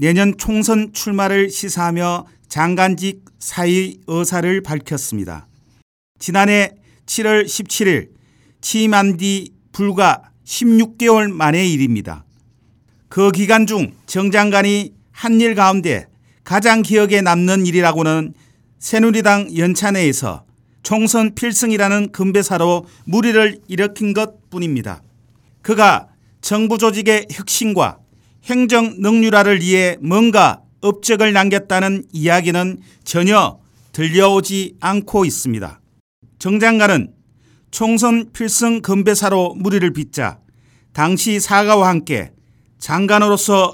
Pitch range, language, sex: 160-210 Hz, Korean, male